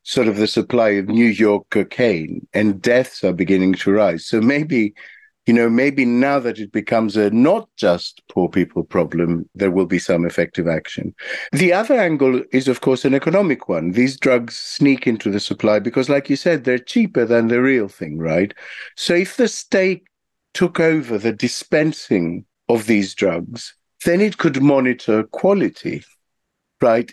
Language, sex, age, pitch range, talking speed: English, male, 50-69, 110-150 Hz, 175 wpm